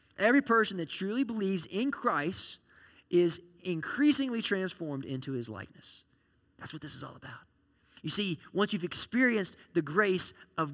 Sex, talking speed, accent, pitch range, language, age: male, 150 wpm, American, 160-200 Hz, English, 20-39